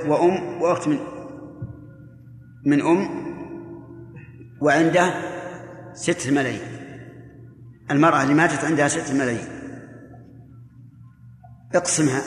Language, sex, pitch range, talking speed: Arabic, male, 130-165 Hz, 75 wpm